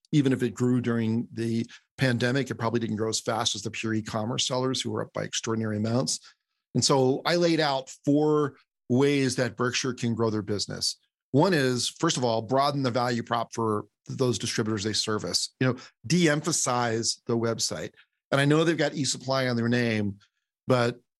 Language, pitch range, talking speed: English, 115-130 Hz, 185 wpm